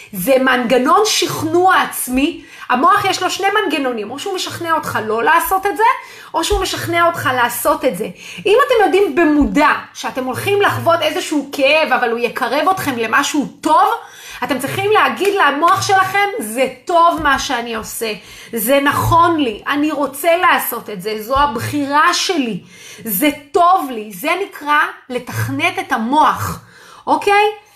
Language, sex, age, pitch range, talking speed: Hebrew, female, 30-49, 260-380 Hz, 150 wpm